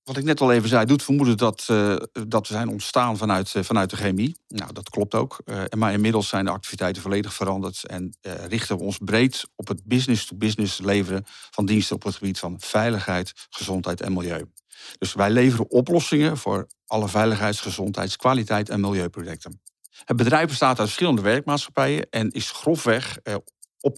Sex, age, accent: male, 50-69, Dutch